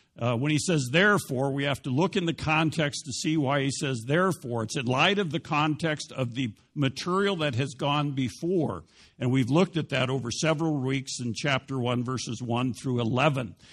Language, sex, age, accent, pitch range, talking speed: English, male, 60-79, American, 125-160 Hz, 200 wpm